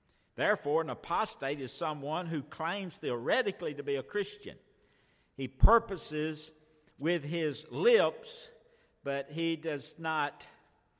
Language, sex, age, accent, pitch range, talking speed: English, male, 60-79, American, 120-155 Hz, 115 wpm